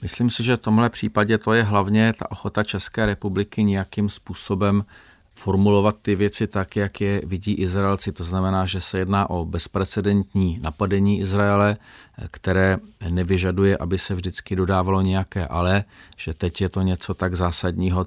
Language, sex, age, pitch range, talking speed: Czech, male, 40-59, 85-100 Hz, 155 wpm